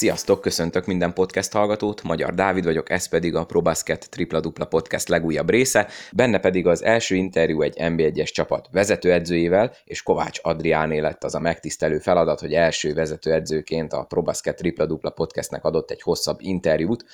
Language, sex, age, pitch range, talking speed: Hungarian, male, 20-39, 80-85 Hz, 160 wpm